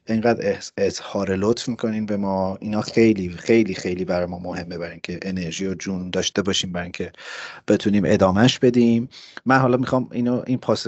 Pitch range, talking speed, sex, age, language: 90-115 Hz, 170 wpm, male, 30-49, Persian